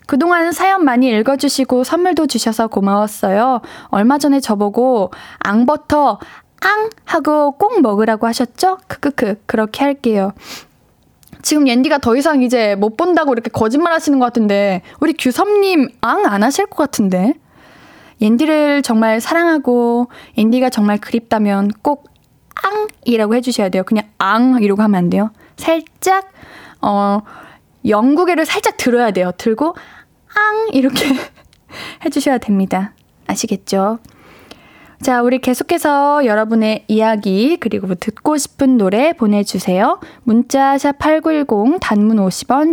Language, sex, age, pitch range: Korean, female, 10-29, 215-305 Hz